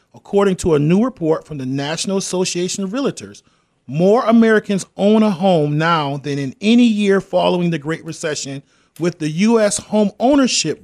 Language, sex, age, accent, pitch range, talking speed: English, male, 40-59, American, 155-215 Hz, 165 wpm